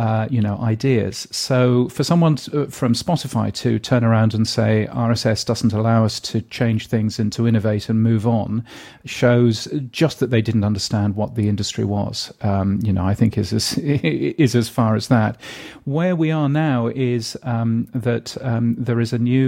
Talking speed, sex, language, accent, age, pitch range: 190 wpm, male, English, British, 40-59, 110-130 Hz